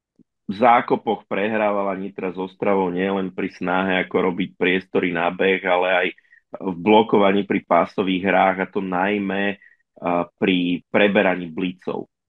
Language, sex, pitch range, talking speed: Slovak, male, 95-105 Hz, 130 wpm